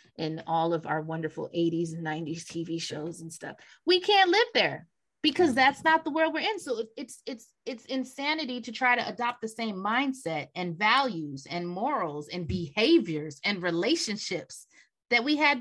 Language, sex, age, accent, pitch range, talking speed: English, female, 30-49, American, 180-260 Hz, 175 wpm